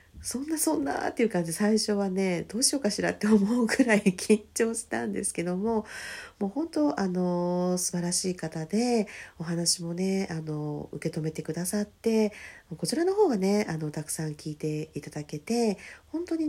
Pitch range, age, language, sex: 160-230 Hz, 40-59, Japanese, female